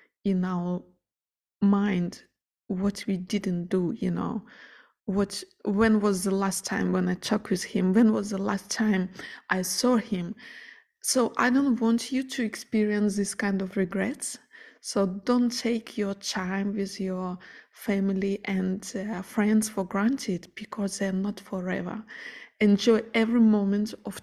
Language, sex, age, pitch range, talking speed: English, female, 20-39, 190-230 Hz, 150 wpm